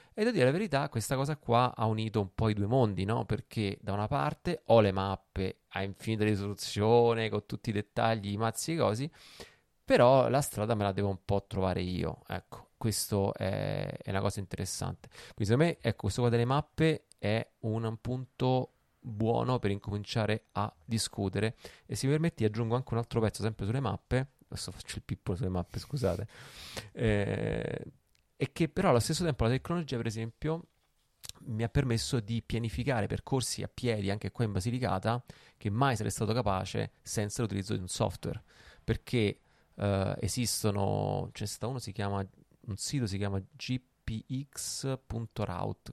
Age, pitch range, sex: 20-39, 100-130 Hz, male